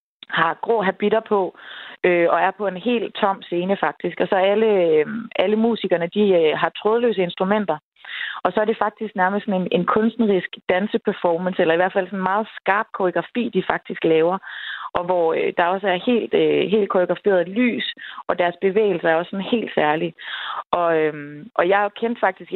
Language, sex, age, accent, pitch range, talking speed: Danish, female, 20-39, native, 180-215 Hz, 185 wpm